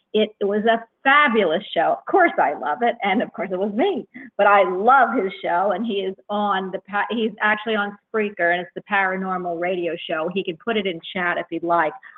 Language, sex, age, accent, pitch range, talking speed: English, female, 50-69, American, 185-235 Hz, 220 wpm